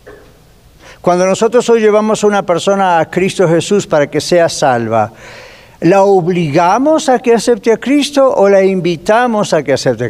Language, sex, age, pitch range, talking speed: Spanish, male, 50-69, 160-210 Hz, 165 wpm